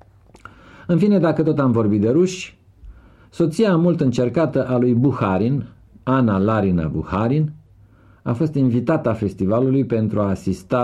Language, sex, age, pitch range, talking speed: Romanian, male, 50-69, 95-125 Hz, 140 wpm